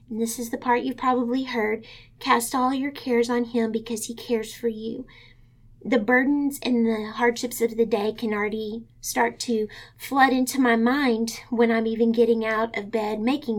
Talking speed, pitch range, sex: 190 wpm, 220-255 Hz, female